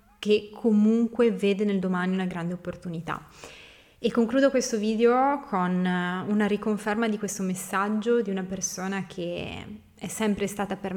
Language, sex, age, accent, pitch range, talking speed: Italian, female, 20-39, native, 180-210 Hz, 140 wpm